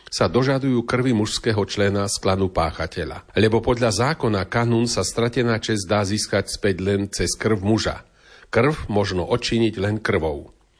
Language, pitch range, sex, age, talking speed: Slovak, 100-120 Hz, male, 40-59, 150 wpm